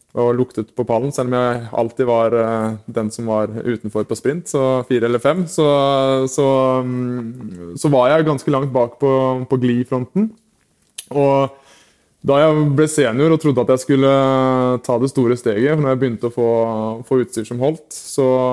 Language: Swedish